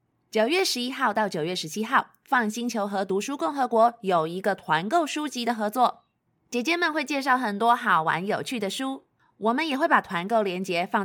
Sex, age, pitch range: female, 20-39, 175-240 Hz